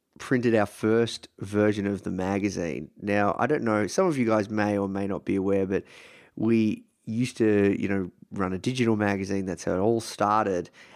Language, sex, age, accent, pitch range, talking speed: English, male, 30-49, Australian, 95-115 Hz, 195 wpm